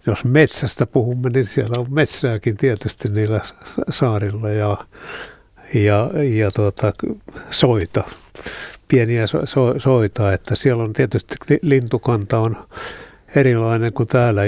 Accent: native